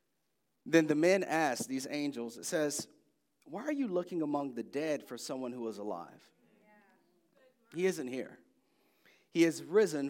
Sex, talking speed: male, 155 wpm